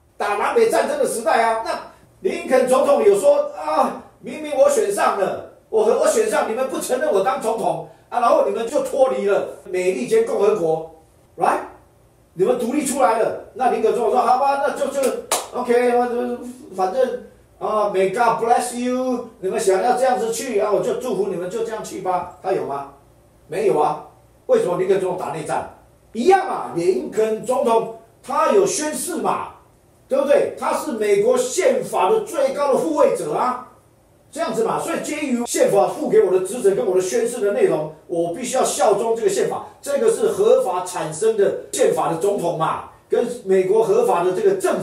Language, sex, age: Chinese, male, 40-59